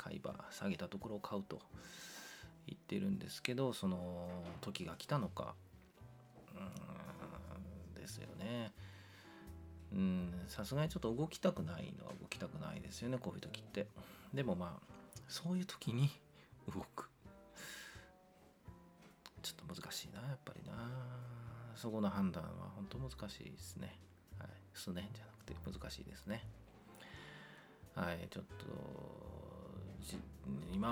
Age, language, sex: 40-59, Japanese, male